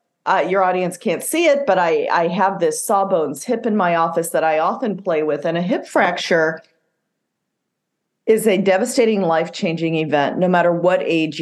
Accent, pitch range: American, 165-210 Hz